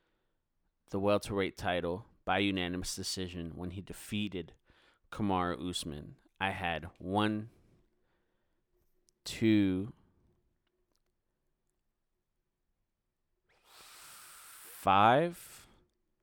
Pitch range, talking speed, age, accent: 90-110 Hz, 65 wpm, 30-49, American